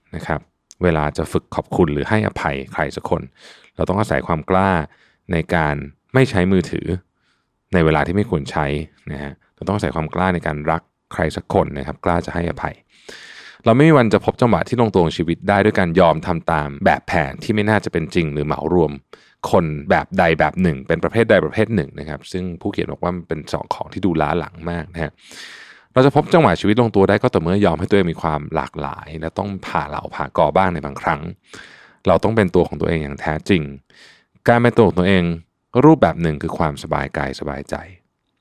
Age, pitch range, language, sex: 20-39, 80-105 Hz, Thai, male